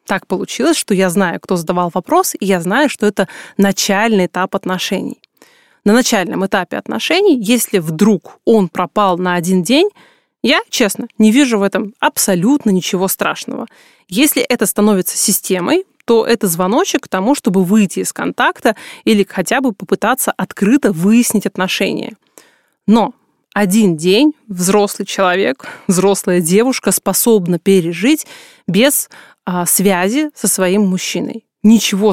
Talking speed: 135 wpm